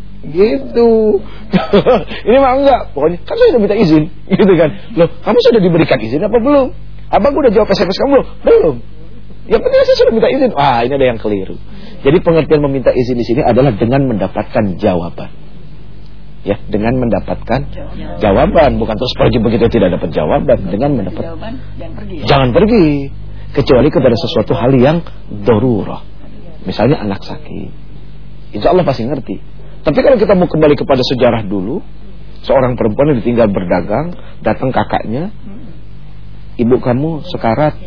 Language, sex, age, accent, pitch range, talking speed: English, male, 40-59, Indonesian, 120-175 Hz, 145 wpm